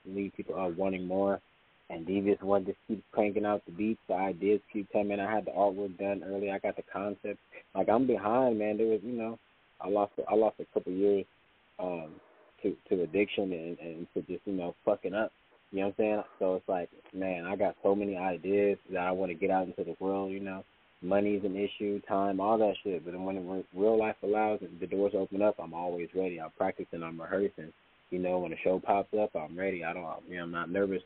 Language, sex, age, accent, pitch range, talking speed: English, male, 20-39, American, 95-105 Hz, 235 wpm